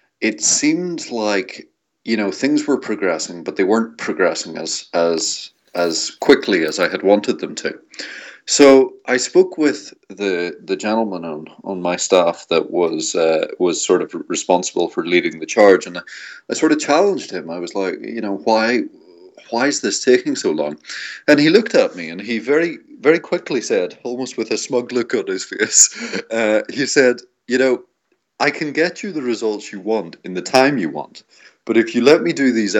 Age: 30-49